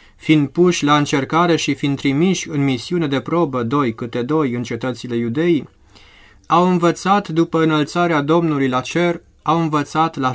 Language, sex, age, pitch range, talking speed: Romanian, male, 20-39, 125-165 Hz, 155 wpm